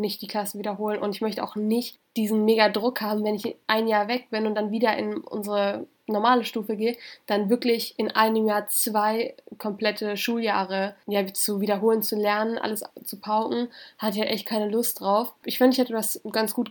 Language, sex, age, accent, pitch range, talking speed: German, female, 10-29, German, 205-235 Hz, 200 wpm